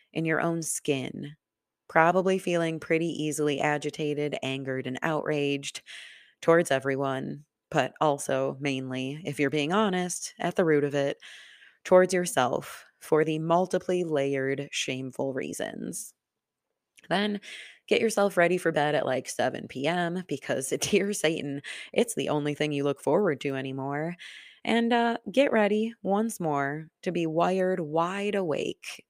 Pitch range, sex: 140-185 Hz, female